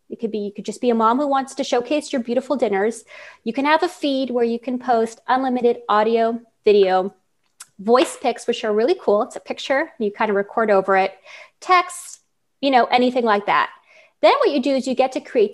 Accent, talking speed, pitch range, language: American, 225 wpm, 220-295 Hz, English